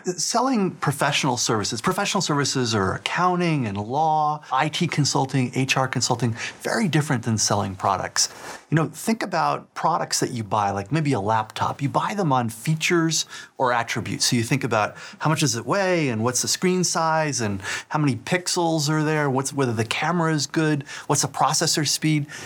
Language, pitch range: English, 115-155 Hz